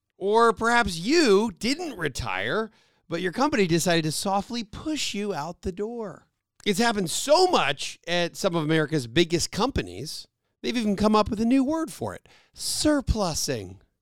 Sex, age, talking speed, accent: male, 40-59, 160 wpm, American